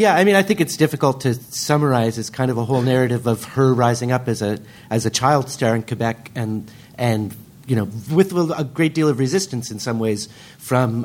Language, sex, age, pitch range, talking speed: English, male, 40-59, 115-135 Hz, 225 wpm